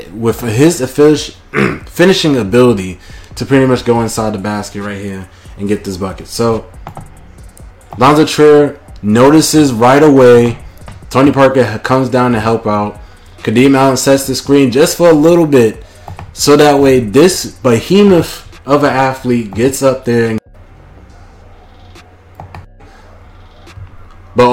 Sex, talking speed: male, 130 wpm